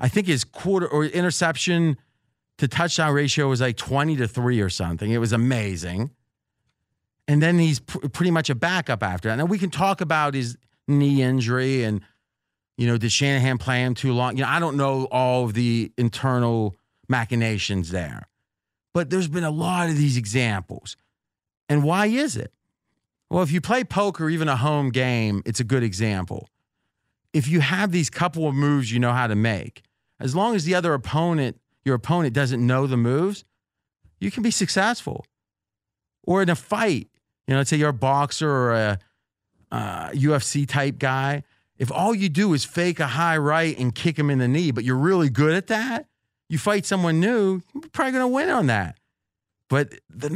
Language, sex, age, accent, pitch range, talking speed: English, male, 30-49, American, 115-165 Hz, 190 wpm